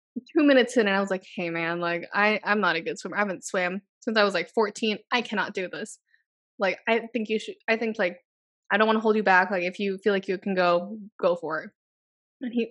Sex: female